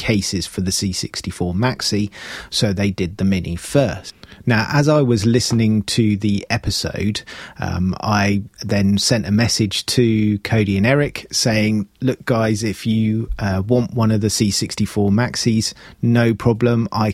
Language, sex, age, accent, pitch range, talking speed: English, male, 30-49, British, 100-120 Hz, 155 wpm